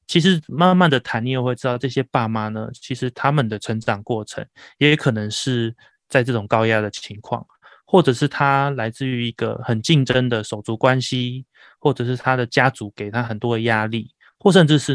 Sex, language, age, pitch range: male, Chinese, 20-39, 115-140 Hz